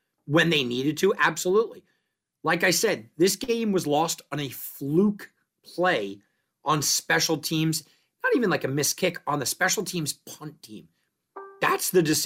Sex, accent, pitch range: male, American, 140-200 Hz